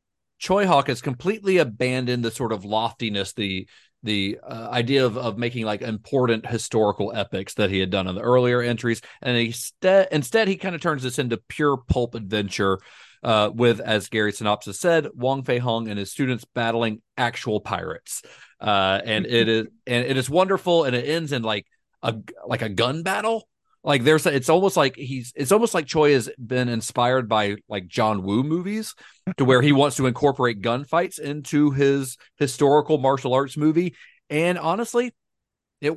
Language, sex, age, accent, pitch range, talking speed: English, male, 40-59, American, 110-160 Hz, 180 wpm